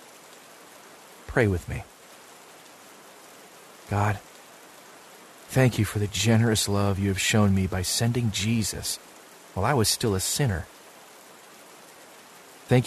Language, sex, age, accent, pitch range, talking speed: English, male, 30-49, American, 100-120 Hz, 110 wpm